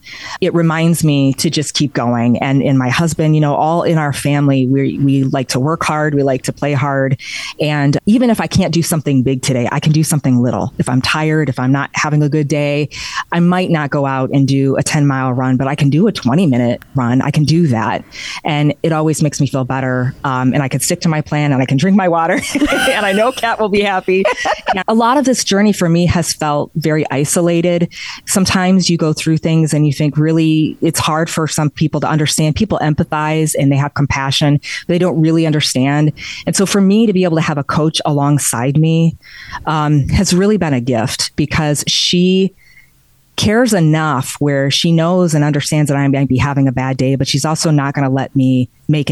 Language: English